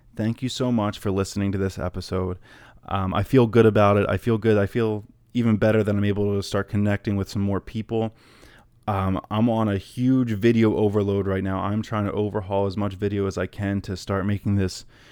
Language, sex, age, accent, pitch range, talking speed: English, male, 20-39, American, 100-110 Hz, 220 wpm